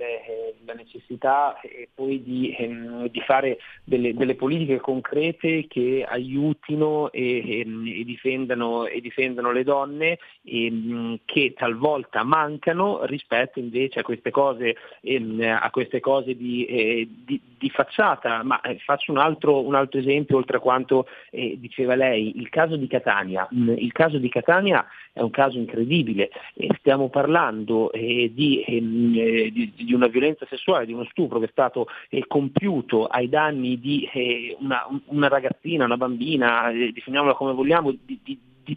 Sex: male